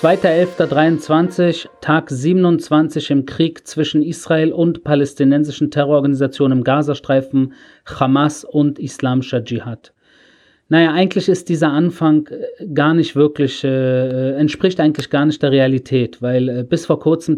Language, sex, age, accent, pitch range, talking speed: German, male, 40-59, German, 140-165 Hz, 125 wpm